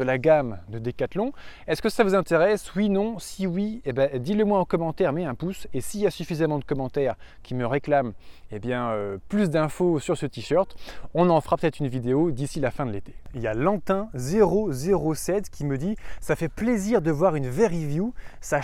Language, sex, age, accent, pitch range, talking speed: French, male, 20-39, French, 130-185 Hz, 230 wpm